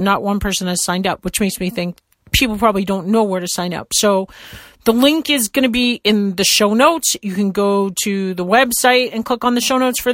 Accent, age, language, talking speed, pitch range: American, 40-59, English, 250 wpm, 200-245 Hz